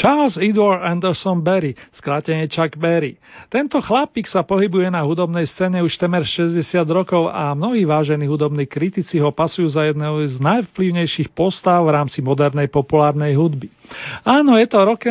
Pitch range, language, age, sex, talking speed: 150-195 Hz, Slovak, 40-59, male, 155 wpm